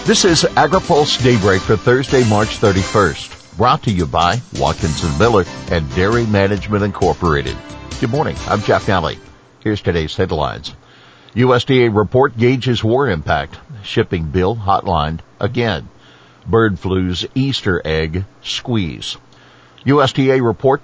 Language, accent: English, American